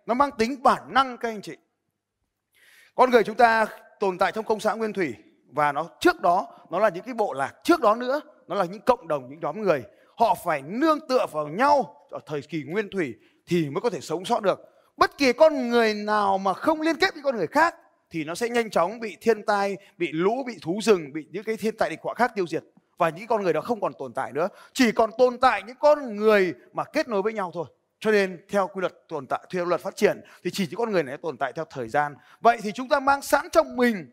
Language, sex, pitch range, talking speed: Vietnamese, male, 180-260 Hz, 260 wpm